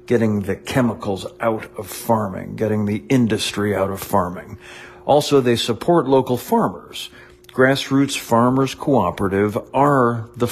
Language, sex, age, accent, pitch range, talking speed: English, male, 50-69, American, 105-130 Hz, 125 wpm